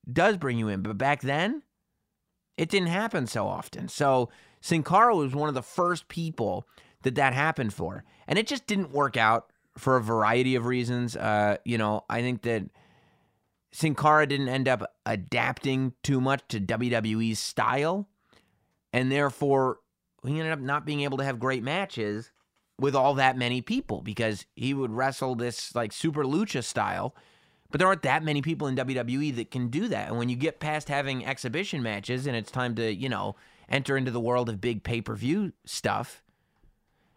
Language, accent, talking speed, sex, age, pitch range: English, American, 180 wpm, male, 30-49, 120-155 Hz